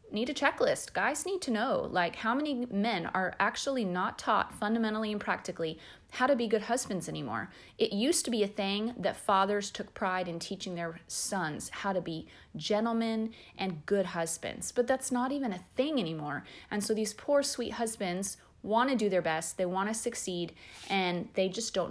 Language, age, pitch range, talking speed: English, 30-49, 180-245 Hz, 195 wpm